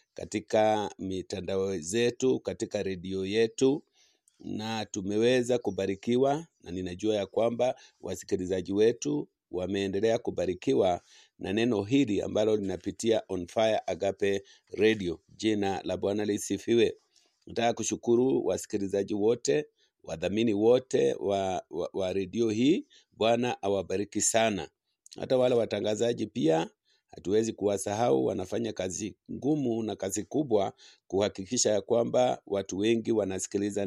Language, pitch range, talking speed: English, 100-125 Hz, 110 wpm